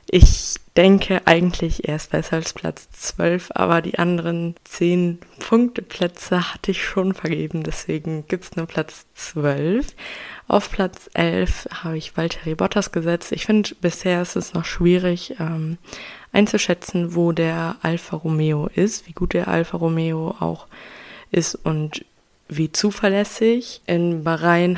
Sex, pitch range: female, 160-185 Hz